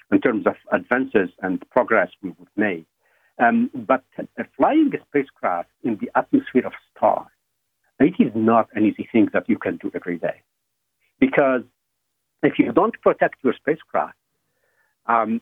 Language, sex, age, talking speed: English, male, 50-69, 155 wpm